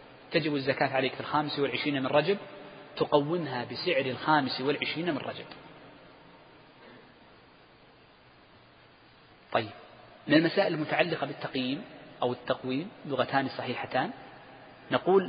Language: Arabic